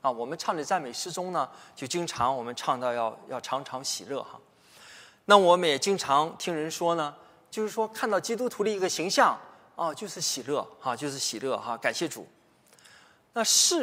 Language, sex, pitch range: Chinese, male, 135-200 Hz